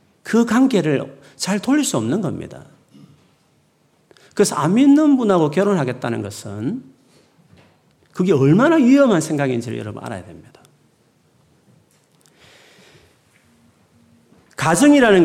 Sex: male